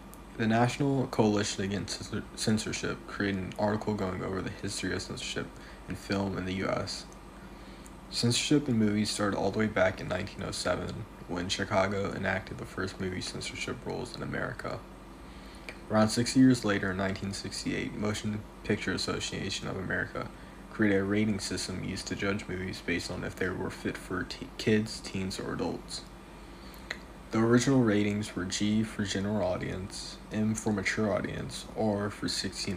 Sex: male